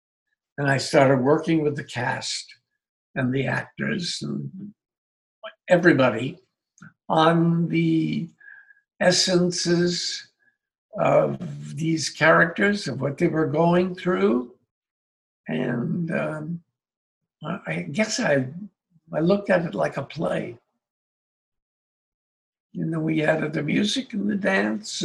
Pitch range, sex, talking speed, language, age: 130-180 Hz, male, 115 wpm, English, 60-79